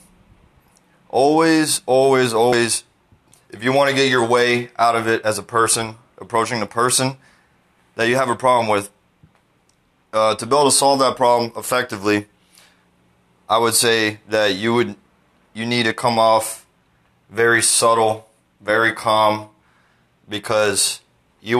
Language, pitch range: English, 105-120 Hz